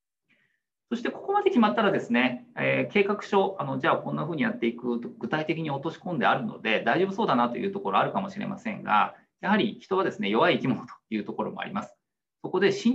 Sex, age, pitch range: male, 40-59, 160-230 Hz